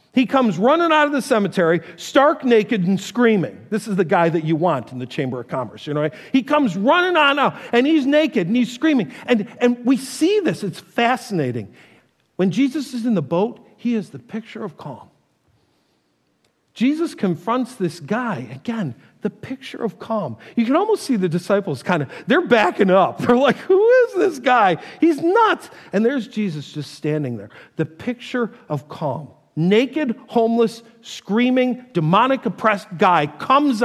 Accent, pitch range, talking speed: American, 170-250 Hz, 180 wpm